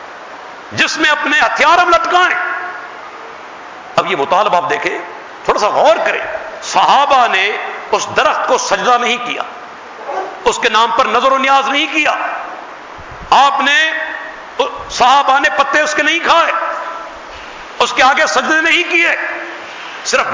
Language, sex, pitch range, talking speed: English, male, 260-335 Hz, 140 wpm